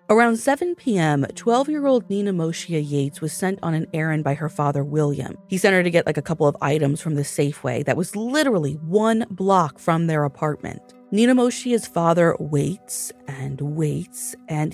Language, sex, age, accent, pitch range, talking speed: English, female, 30-49, American, 150-210 Hz, 175 wpm